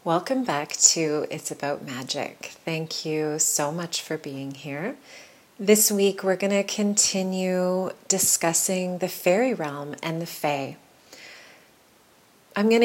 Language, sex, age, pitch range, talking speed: English, female, 30-49, 160-205 Hz, 130 wpm